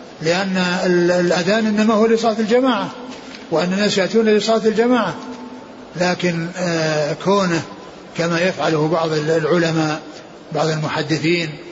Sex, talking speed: male, 95 wpm